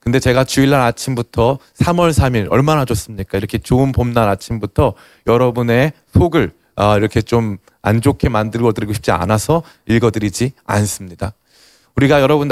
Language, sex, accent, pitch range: Korean, male, native, 115-155 Hz